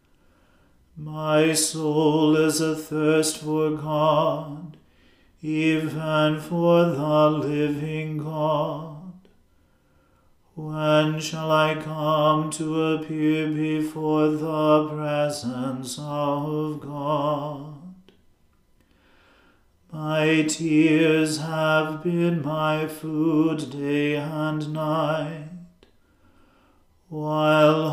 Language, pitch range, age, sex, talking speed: English, 150-155 Hz, 40-59, male, 70 wpm